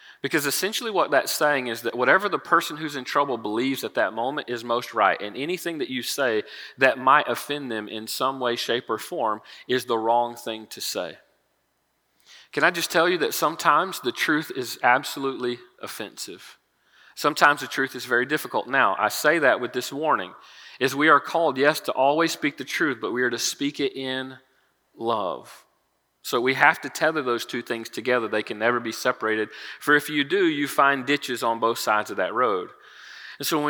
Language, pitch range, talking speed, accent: English, 120-150 Hz, 205 wpm, American